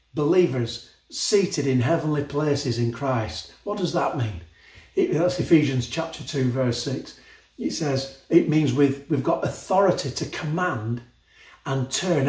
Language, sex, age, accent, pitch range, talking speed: English, male, 40-59, British, 115-155 Hz, 145 wpm